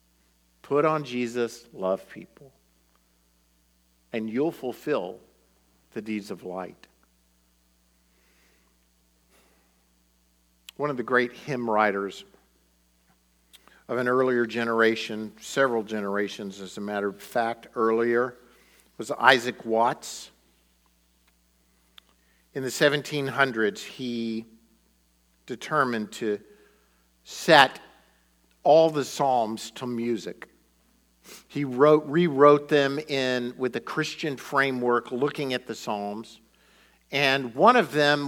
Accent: American